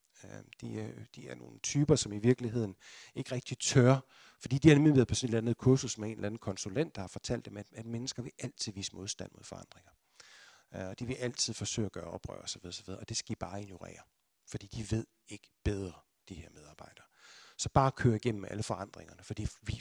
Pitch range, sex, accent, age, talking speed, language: 105-130 Hz, male, native, 60-79, 225 wpm, Danish